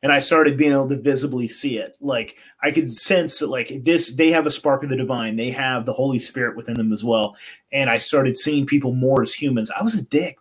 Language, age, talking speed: English, 30-49, 255 wpm